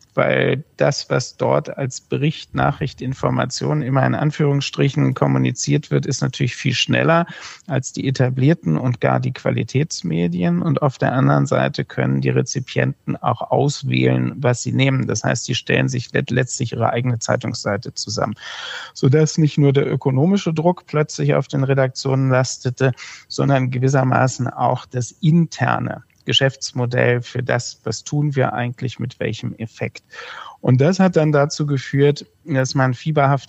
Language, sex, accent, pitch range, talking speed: German, male, German, 125-145 Hz, 145 wpm